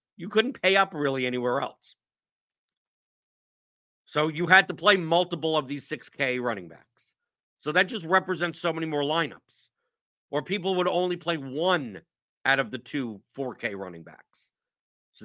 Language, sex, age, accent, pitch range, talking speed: English, male, 50-69, American, 120-170 Hz, 155 wpm